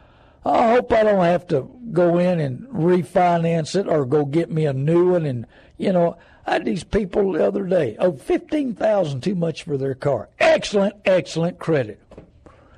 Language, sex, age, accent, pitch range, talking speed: English, male, 60-79, American, 155-210 Hz, 180 wpm